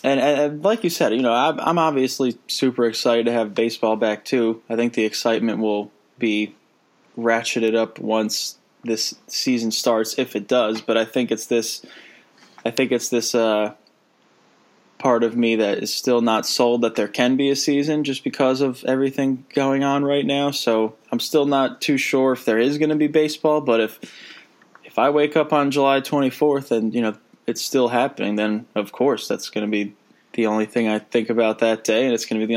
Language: English